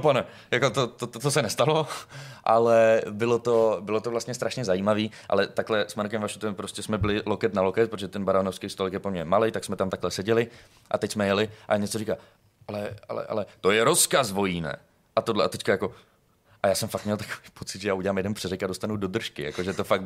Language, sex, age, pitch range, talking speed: Czech, male, 20-39, 100-115 Hz, 230 wpm